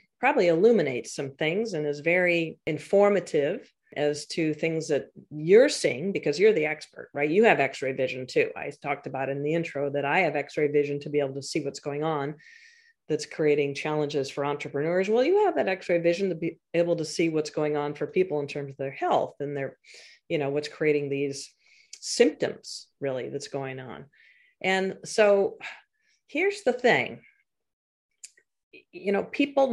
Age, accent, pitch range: 40-59, American, 150-200 Hz